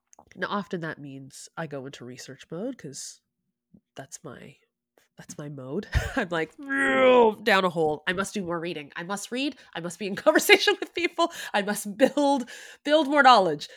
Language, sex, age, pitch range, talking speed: English, female, 20-39, 150-235 Hz, 180 wpm